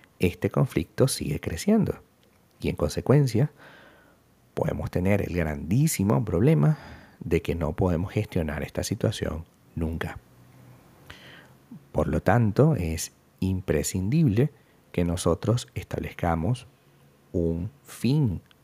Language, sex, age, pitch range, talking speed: Spanish, male, 50-69, 80-120 Hz, 95 wpm